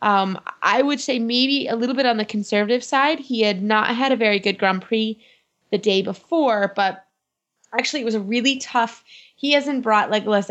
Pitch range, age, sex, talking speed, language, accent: 195-255 Hz, 20-39, female, 200 wpm, English, American